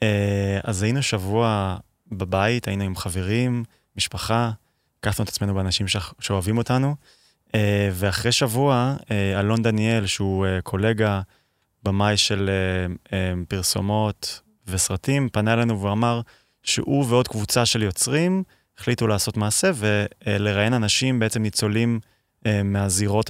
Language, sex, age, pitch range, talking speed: Hebrew, male, 20-39, 100-115 Hz, 105 wpm